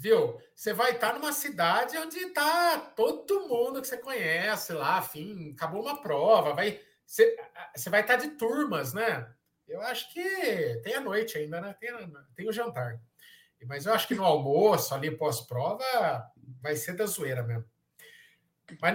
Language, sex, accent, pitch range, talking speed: Portuguese, male, Brazilian, 160-245 Hz, 160 wpm